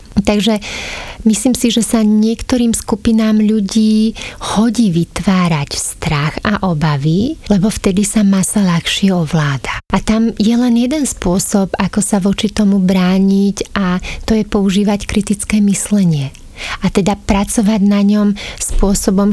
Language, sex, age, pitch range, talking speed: Slovak, female, 30-49, 190-220 Hz, 130 wpm